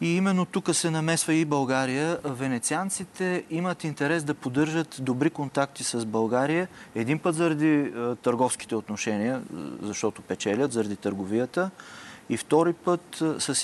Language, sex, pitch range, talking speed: Bulgarian, male, 110-135 Hz, 130 wpm